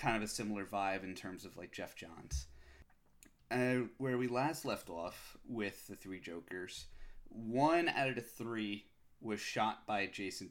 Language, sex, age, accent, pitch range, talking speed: English, male, 30-49, American, 100-115 Hz, 170 wpm